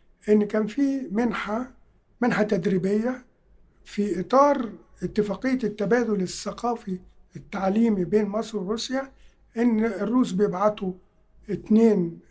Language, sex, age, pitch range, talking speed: Arabic, male, 50-69, 185-220 Hz, 95 wpm